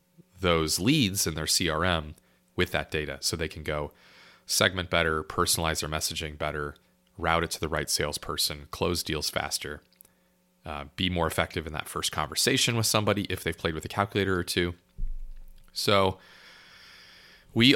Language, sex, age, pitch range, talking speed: English, male, 30-49, 85-105 Hz, 160 wpm